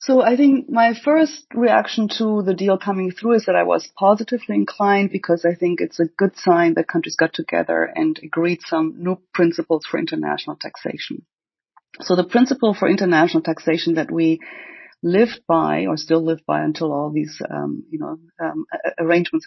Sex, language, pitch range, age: female, English, 160-200 Hz, 30-49